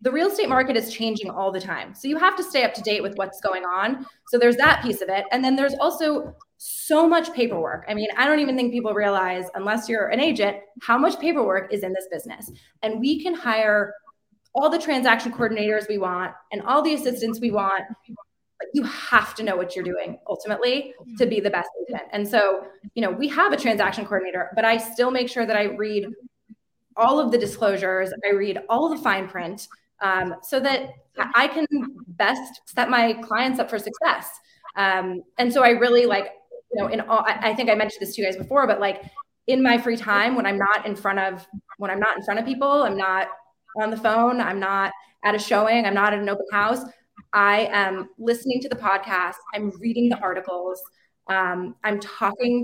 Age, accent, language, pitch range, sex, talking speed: 20-39, American, English, 195-245 Hz, female, 215 wpm